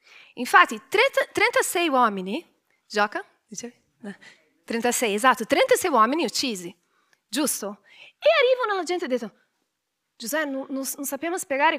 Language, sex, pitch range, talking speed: Italian, female, 230-345 Hz, 115 wpm